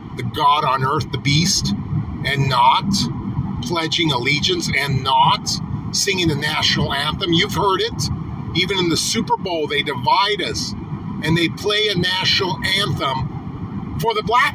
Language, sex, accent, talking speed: English, male, American, 150 wpm